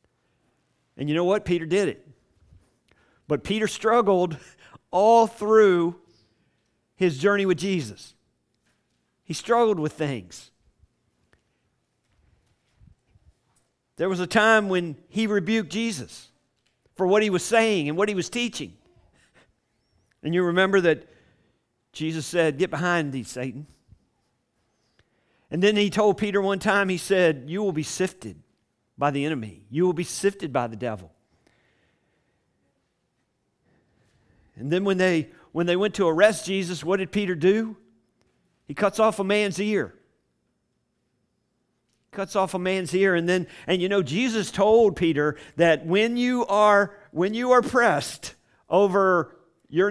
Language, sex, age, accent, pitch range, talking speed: English, male, 50-69, American, 155-205 Hz, 135 wpm